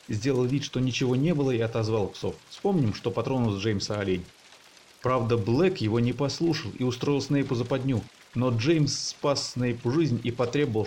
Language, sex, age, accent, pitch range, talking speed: Russian, male, 30-49, native, 115-145 Hz, 175 wpm